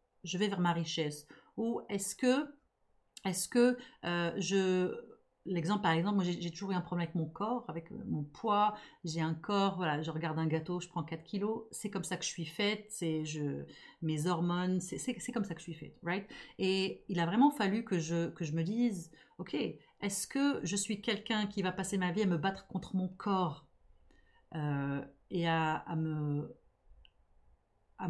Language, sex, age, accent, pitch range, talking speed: French, female, 40-59, French, 165-210 Hz, 205 wpm